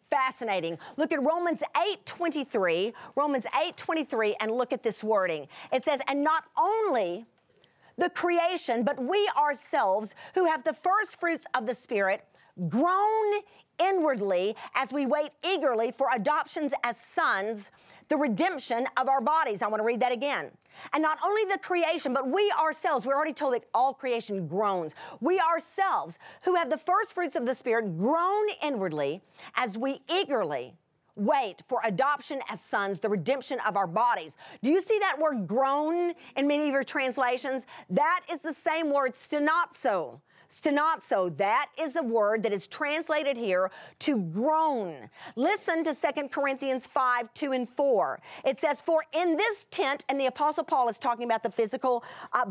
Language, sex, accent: English, female, American